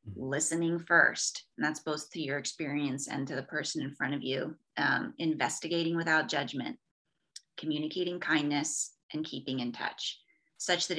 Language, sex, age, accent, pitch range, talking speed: English, female, 30-49, American, 155-185 Hz, 155 wpm